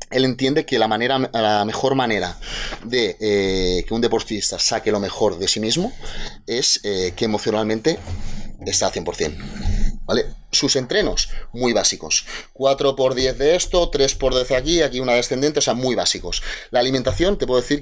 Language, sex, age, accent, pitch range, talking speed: Spanish, male, 30-49, Spanish, 100-140 Hz, 175 wpm